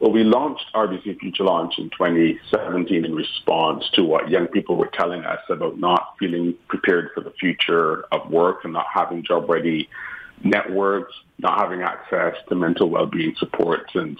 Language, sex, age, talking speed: English, male, 40-59, 165 wpm